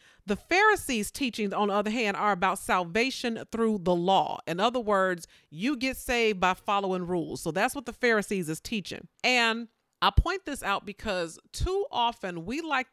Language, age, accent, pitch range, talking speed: English, 40-59, American, 195-240 Hz, 180 wpm